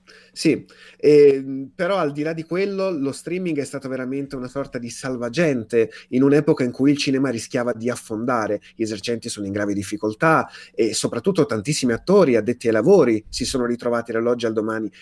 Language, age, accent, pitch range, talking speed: Italian, 30-49, native, 115-155 Hz, 180 wpm